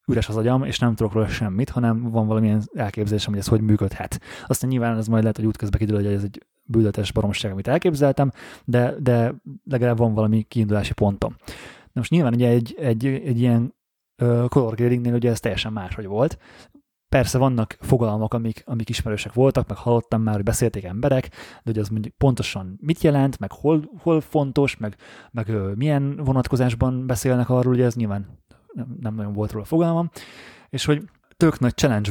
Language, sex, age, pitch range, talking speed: Hungarian, male, 20-39, 110-135 Hz, 180 wpm